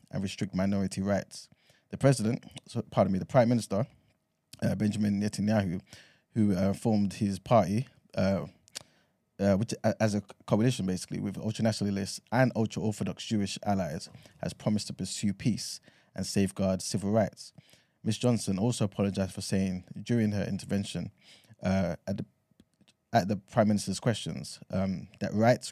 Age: 20-39